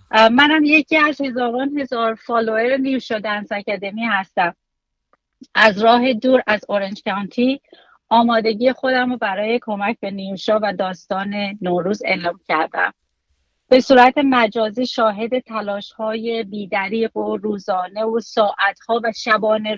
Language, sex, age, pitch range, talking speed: Persian, female, 40-59, 200-245 Hz, 125 wpm